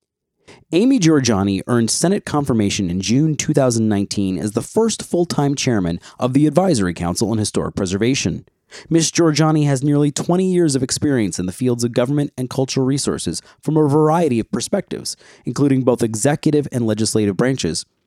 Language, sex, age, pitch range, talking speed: English, male, 30-49, 115-155 Hz, 155 wpm